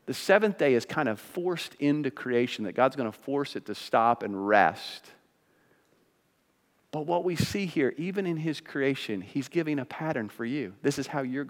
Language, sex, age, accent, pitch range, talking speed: English, male, 40-59, American, 140-195 Hz, 200 wpm